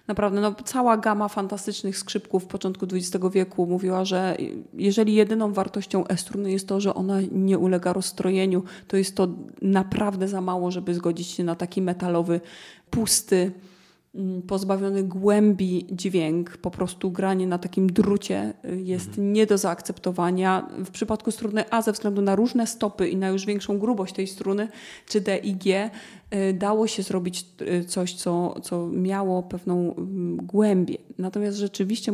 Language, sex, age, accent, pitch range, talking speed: Polish, female, 30-49, native, 185-215 Hz, 150 wpm